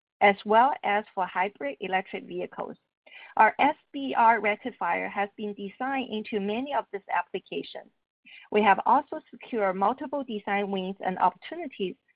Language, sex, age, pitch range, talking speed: English, female, 40-59, 195-250 Hz, 135 wpm